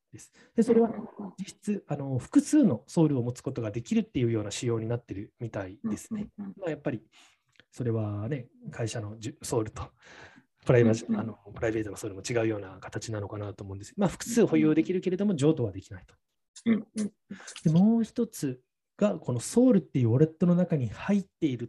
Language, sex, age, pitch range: Japanese, male, 20-39, 115-180 Hz